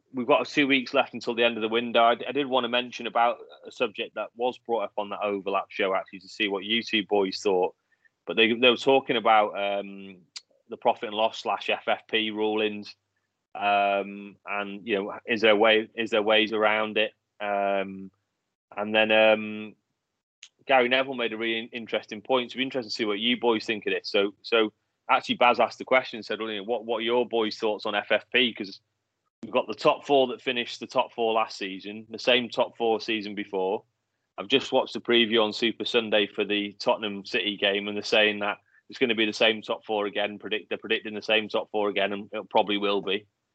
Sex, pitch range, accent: male, 100-120 Hz, British